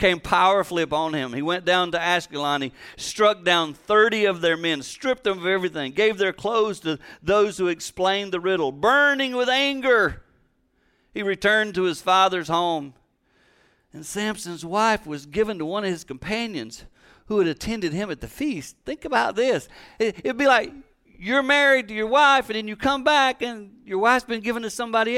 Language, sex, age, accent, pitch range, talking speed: English, male, 50-69, American, 135-210 Hz, 190 wpm